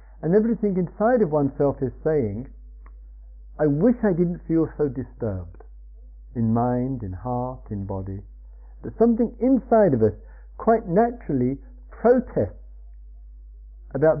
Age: 50-69